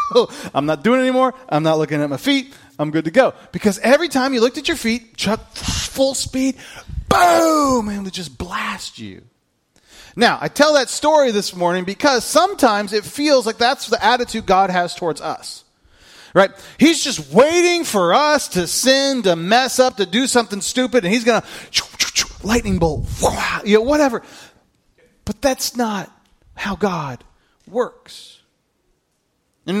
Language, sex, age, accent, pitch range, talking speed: English, male, 30-49, American, 195-260 Hz, 160 wpm